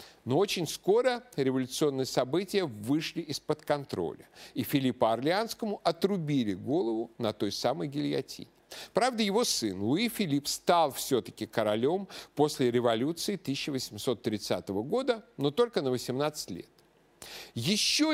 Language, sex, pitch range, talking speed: Russian, male, 115-170 Hz, 115 wpm